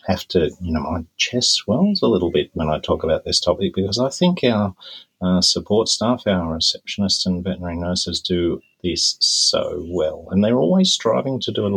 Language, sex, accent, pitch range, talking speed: English, male, Australian, 80-115 Hz, 205 wpm